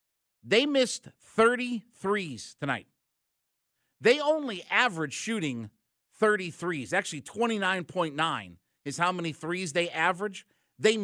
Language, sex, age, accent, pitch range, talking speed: English, male, 50-69, American, 180-255 Hz, 125 wpm